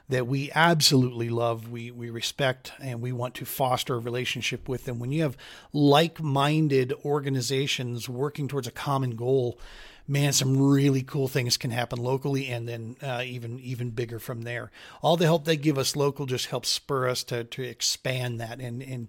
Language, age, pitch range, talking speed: English, 40-59, 120-140 Hz, 185 wpm